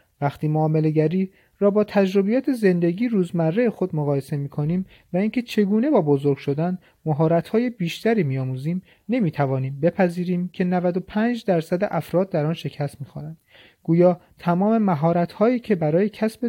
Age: 30-49